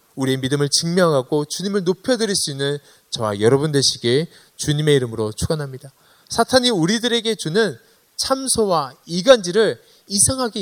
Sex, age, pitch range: male, 20-39, 135-205 Hz